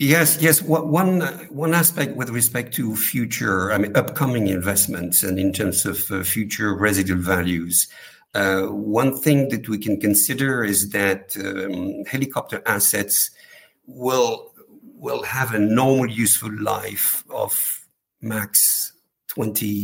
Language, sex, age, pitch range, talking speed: English, male, 50-69, 95-120 Hz, 125 wpm